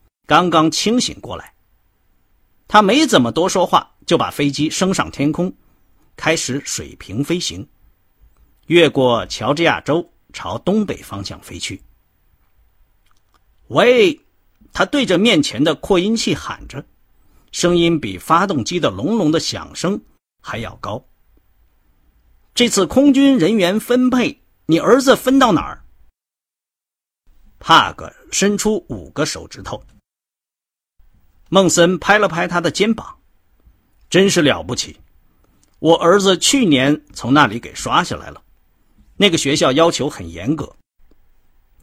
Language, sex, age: Chinese, male, 50-69